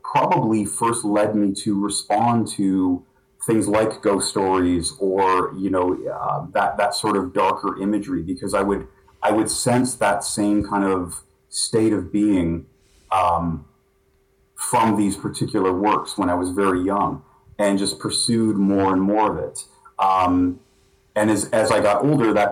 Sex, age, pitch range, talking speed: male, 30-49, 95-115 Hz, 160 wpm